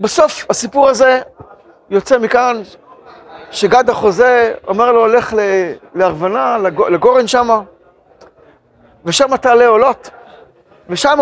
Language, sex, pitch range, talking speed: Hebrew, male, 205-255 Hz, 95 wpm